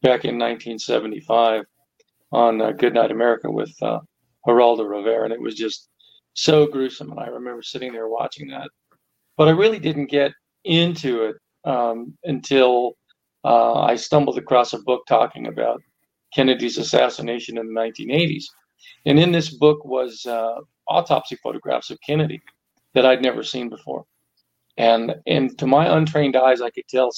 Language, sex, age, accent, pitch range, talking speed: English, male, 40-59, American, 115-145 Hz, 155 wpm